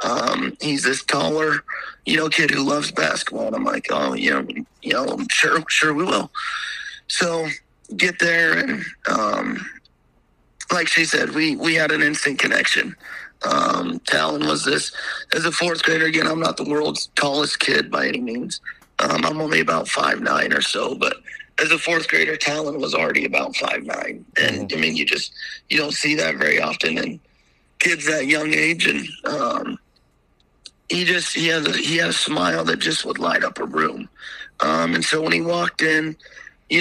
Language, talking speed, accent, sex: English, 185 wpm, American, male